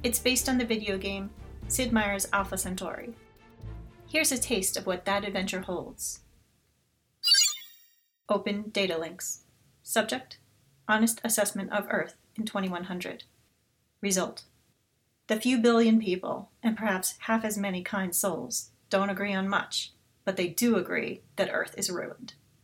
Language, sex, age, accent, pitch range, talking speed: English, female, 30-49, American, 175-215 Hz, 140 wpm